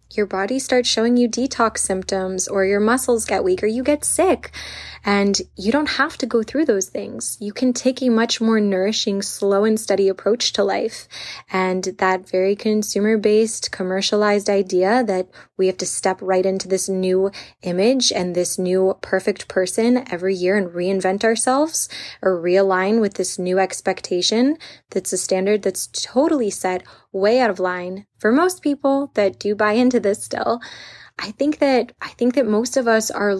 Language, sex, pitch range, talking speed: English, female, 190-230 Hz, 180 wpm